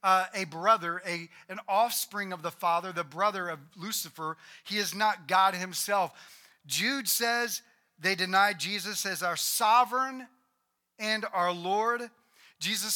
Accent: American